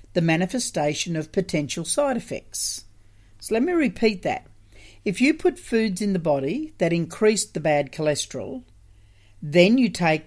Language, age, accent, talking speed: English, 50-69, Australian, 150 wpm